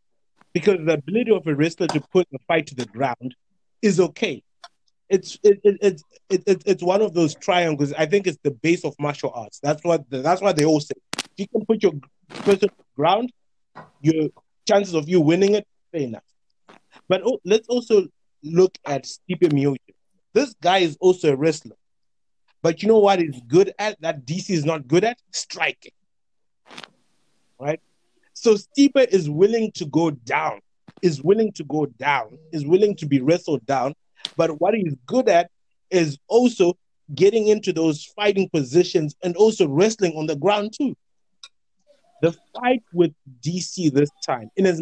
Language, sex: English, male